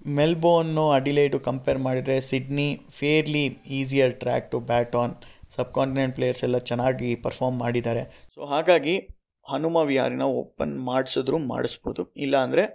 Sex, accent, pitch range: male, native, 125-140 Hz